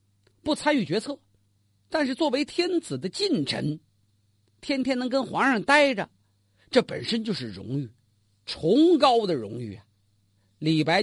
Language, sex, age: Chinese, male, 50-69